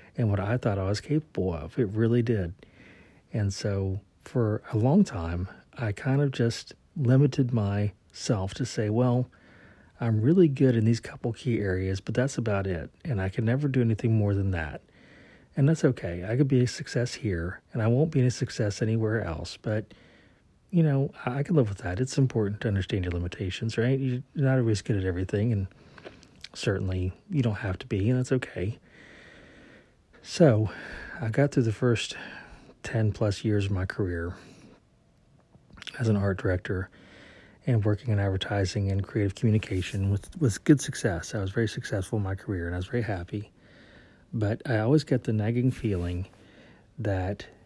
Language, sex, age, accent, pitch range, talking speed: English, male, 40-59, American, 95-125 Hz, 180 wpm